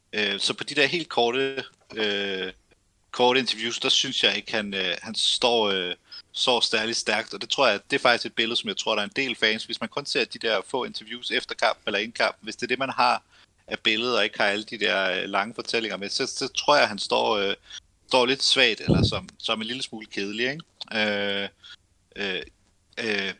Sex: male